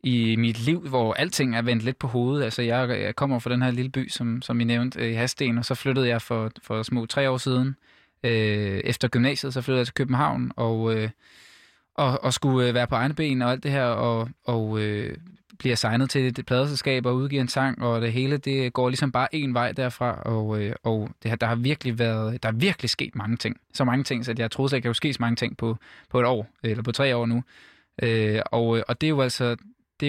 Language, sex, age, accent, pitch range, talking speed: Danish, male, 20-39, native, 115-130 Hz, 240 wpm